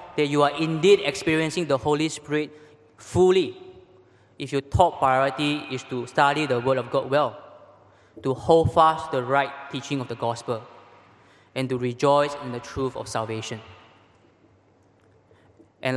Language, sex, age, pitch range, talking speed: English, male, 20-39, 120-150 Hz, 150 wpm